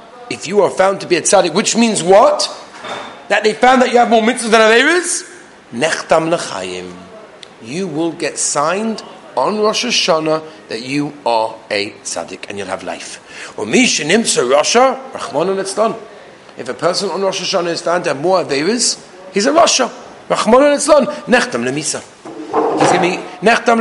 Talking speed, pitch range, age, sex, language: 160 wpm, 175-240 Hz, 40-59, male, English